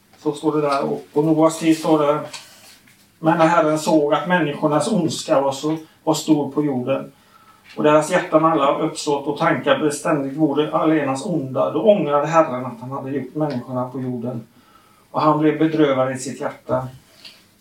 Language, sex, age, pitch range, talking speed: Swedish, male, 30-49, 130-155 Hz, 160 wpm